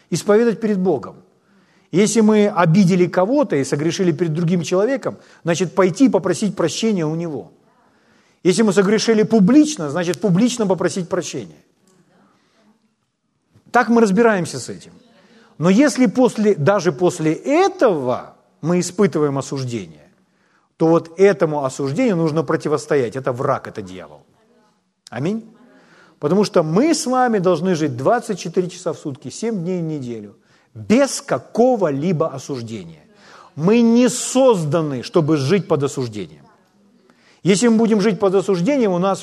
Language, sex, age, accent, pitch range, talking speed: Ukrainian, male, 40-59, native, 165-225 Hz, 130 wpm